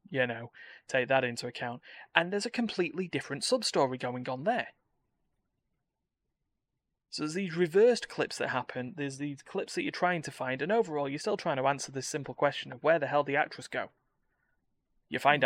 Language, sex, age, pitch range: English, male, 20-39, 130-195 Hz